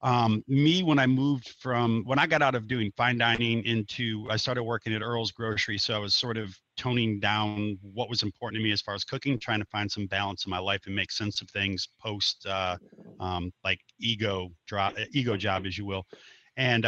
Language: English